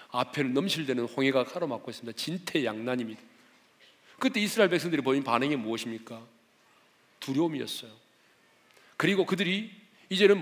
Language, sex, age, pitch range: Korean, male, 40-59, 115-160 Hz